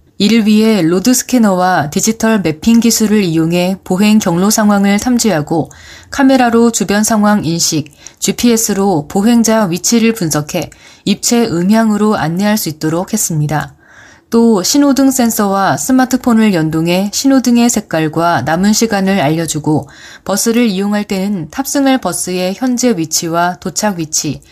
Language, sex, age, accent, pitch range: Korean, female, 20-39, native, 165-225 Hz